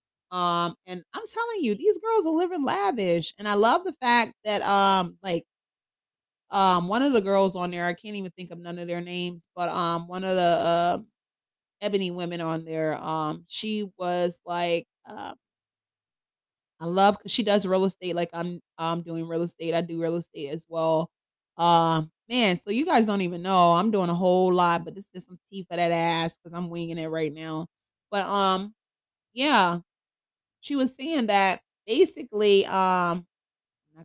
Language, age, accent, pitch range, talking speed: English, 30-49, American, 170-220 Hz, 190 wpm